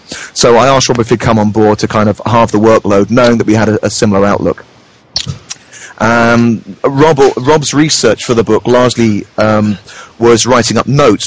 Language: English